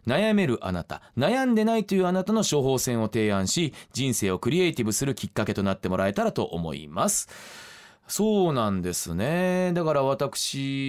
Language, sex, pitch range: Japanese, male, 100-155 Hz